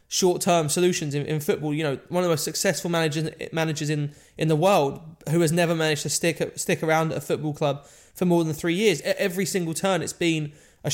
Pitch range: 155-190 Hz